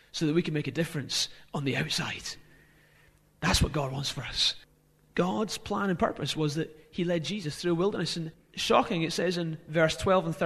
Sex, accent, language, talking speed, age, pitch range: male, British, English, 205 wpm, 30-49, 155-195 Hz